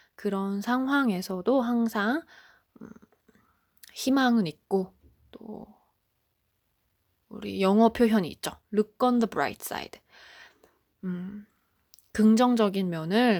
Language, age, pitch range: Korean, 20-39, 195-235 Hz